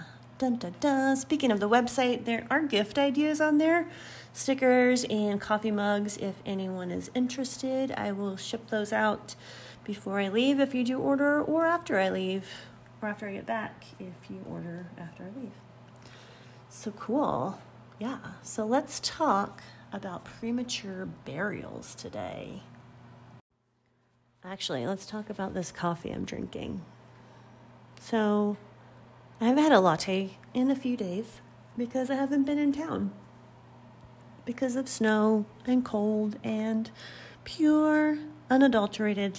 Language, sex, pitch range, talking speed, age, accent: English, female, 175-255 Hz, 135 wpm, 30-49, American